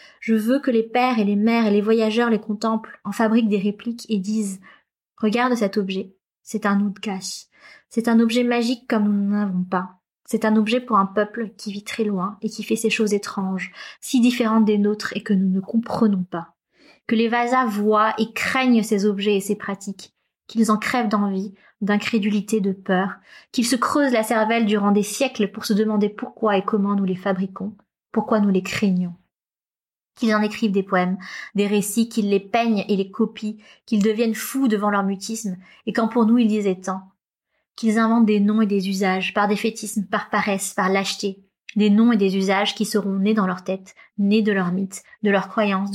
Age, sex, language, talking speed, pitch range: 20-39, female, French, 210 wpm, 195-225 Hz